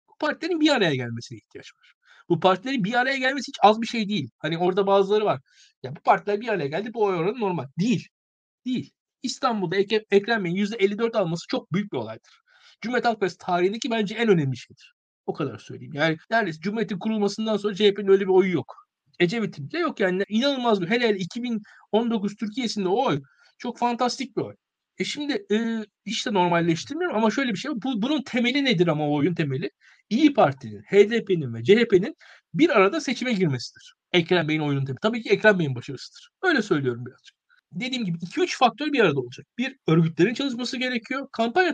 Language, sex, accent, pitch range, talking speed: Turkish, male, native, 180-260 Hz, 180 wpm